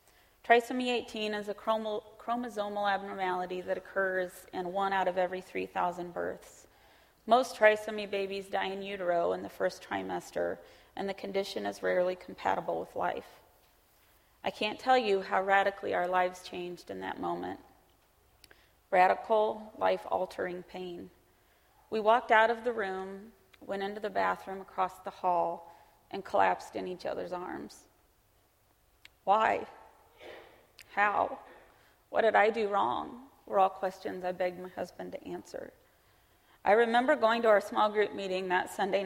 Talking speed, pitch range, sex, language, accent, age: 145 wpm, 185-220 Hz, female, English, American, 30-49